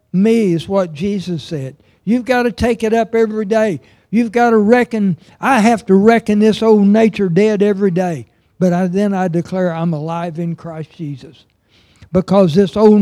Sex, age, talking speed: male, 60-79, 180 wpm